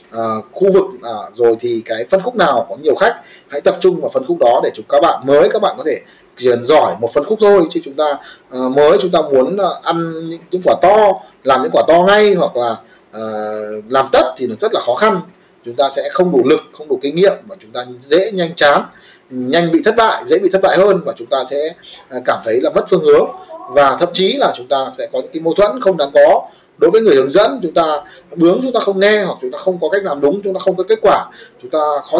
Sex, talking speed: male, 270 wpm